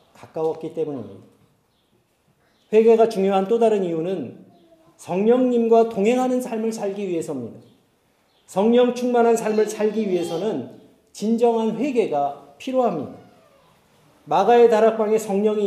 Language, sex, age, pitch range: Korean, male, 40-59, 175-245 Hz